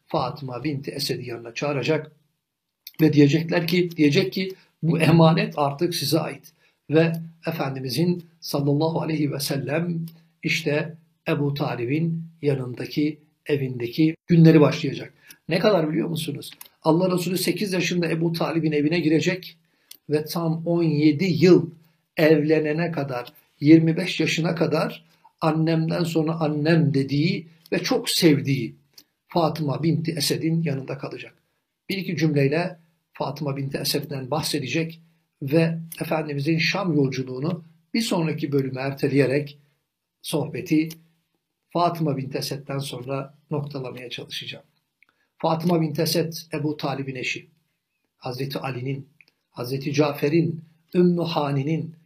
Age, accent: 60-79, native